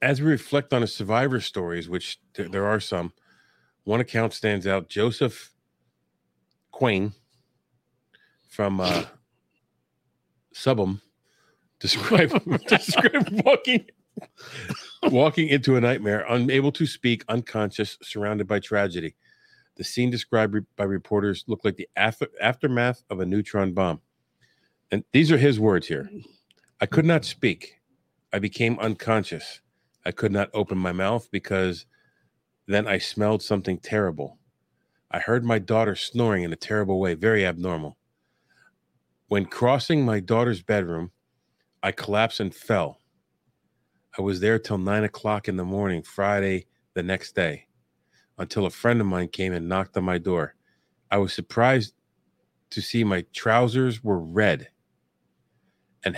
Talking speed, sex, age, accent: 135 wpm, male, 40-59, American